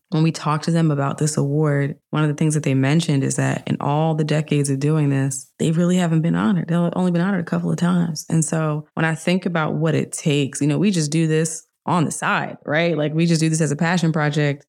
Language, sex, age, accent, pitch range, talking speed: English, female, 20-39, American, 145-170 Hz, 265 wpm